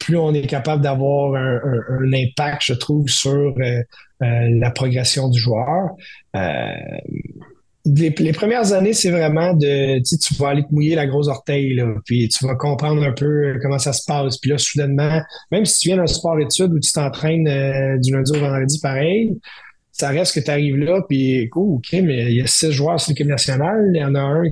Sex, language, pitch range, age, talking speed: male, French, 130-155 Hz, 30-49, 215 wpm